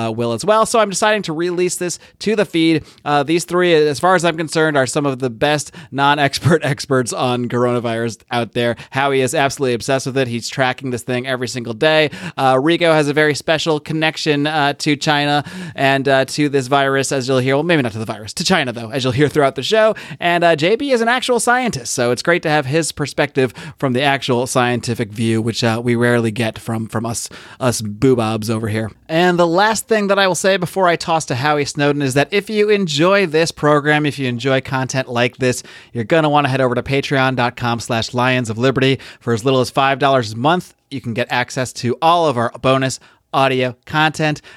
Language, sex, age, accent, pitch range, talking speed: English, male, 30-49, American, 125-160 Hz, 220 wpm